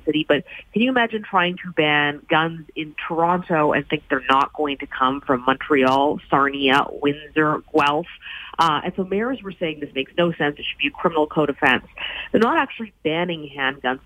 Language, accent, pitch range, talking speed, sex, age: English, American, 145-180 Hz, 190 wpm, female, 40-59